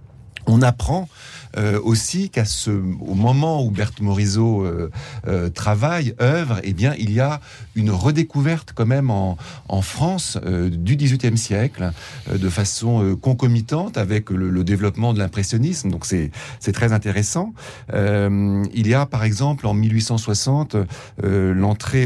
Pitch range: 95-125 Hz